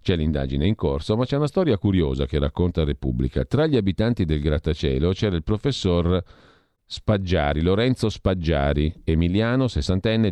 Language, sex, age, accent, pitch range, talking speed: Italian, male, 50-69, native, 80-115 Hz, 145 wpm